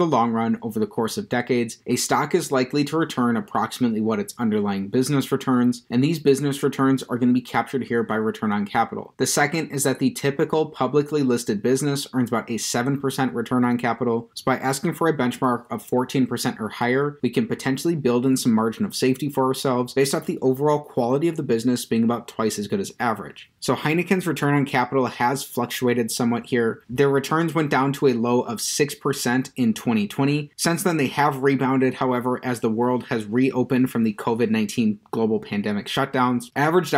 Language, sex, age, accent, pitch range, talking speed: English, male, 30-49, American, 125-150 Hz, 200 wpm